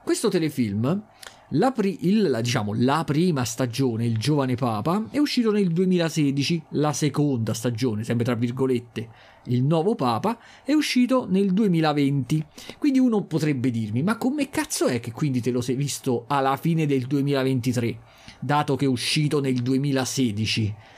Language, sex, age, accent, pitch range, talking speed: Italian, male, 40-59, native, 125-210 Hz, 145 wpm